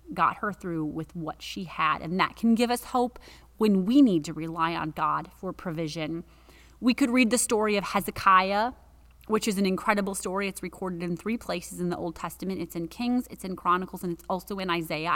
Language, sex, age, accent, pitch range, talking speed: English, female, 30-49, American, 175-215 Hz, 215 wpm